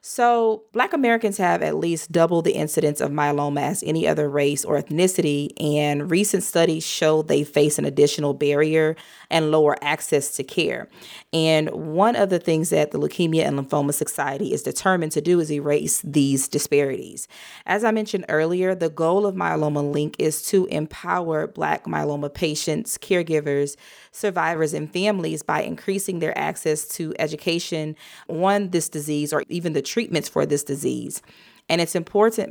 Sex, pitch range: female, 150-185 Hz